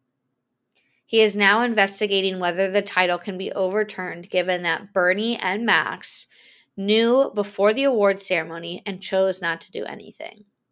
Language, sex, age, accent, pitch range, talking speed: English, female, 20-39, American, 185-220 Hz, 145 wpm